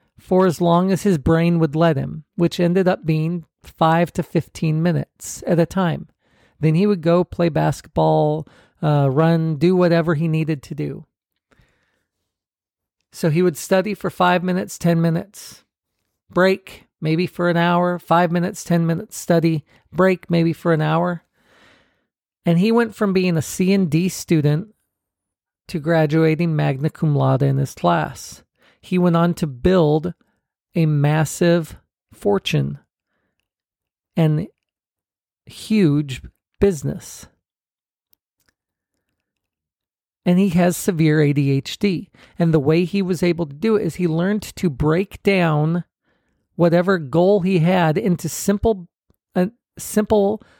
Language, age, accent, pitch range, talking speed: English, 40-59, American, 155-180 Hz, 135 wpm